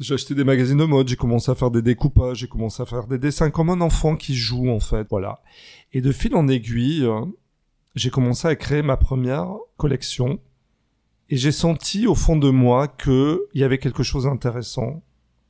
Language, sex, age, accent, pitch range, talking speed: French, male, 30-49, French, 120-140 Hz, 200 wpm